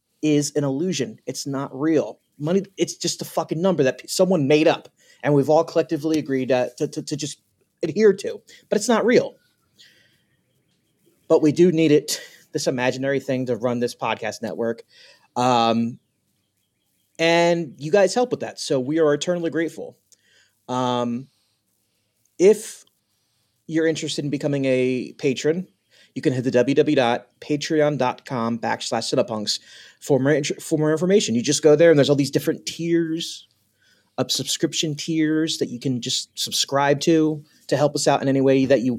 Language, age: English, 30-49